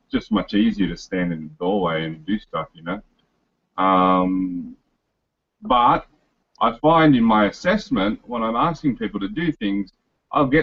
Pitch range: 100-150 Hz